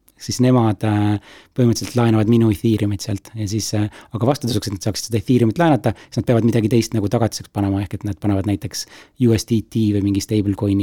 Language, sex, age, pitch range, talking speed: English, male, 30-49, 105-115 Hz, 195 wpm